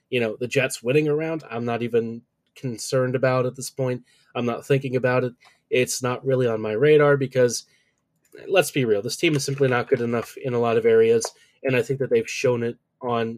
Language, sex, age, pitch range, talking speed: English, male, 20-39, 125-145 Hz, 220 wpm